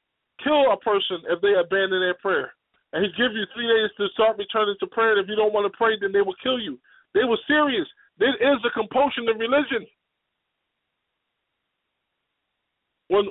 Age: 20-39